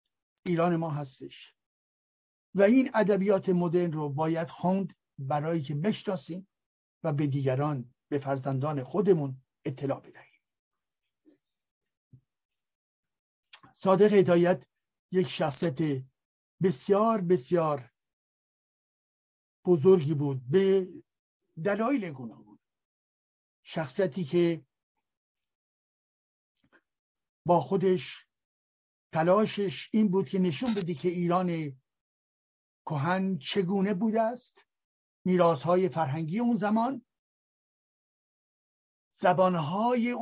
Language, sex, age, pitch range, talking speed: Persian, male, 60-79, 155-205 Hz, 80 wpm